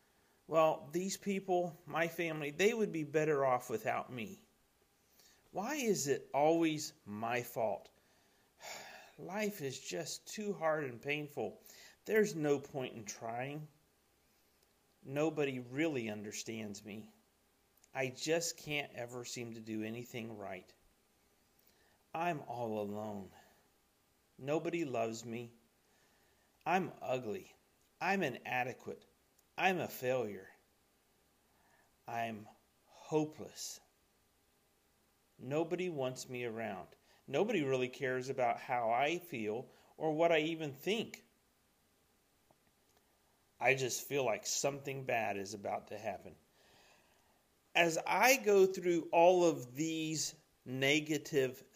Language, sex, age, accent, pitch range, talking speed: English, male, 40-59, American, 120-170 Hz, 105 wpm